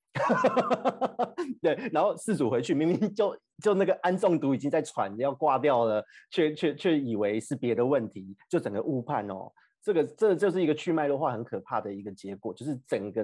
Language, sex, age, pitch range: Chinese, male, 30-49, 110-170 Hz